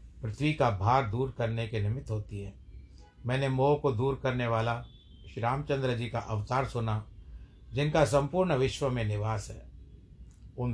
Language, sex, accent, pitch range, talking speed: Hindi, male, native, 100-130 Hz, 155 wpm